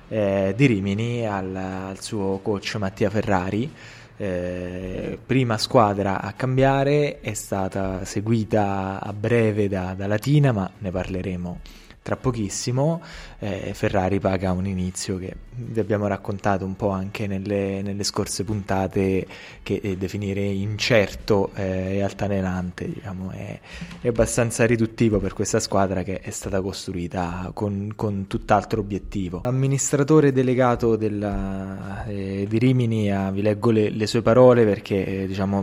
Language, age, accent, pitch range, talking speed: Italian, 20-39, native, 100-120 Hz, 140 wpm